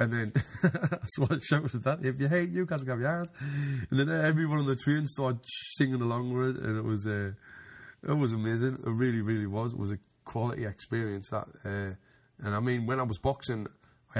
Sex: male